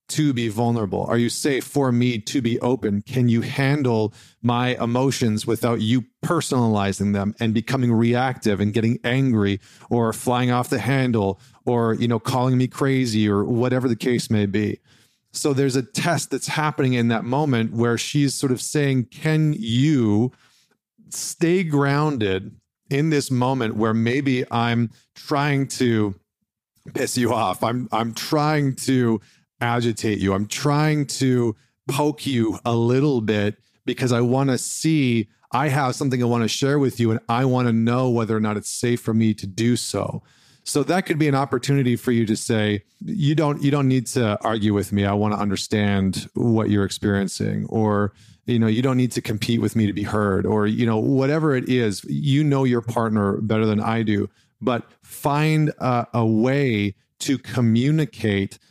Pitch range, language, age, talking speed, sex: 110-135 Hz, English, 40-59, 180 wpm, male